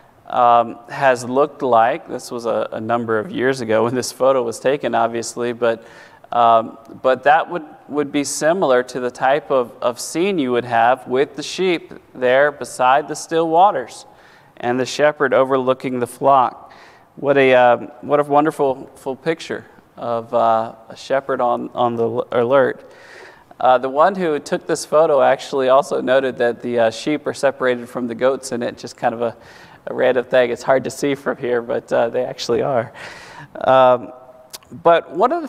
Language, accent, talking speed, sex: English, American, 185 wpm, male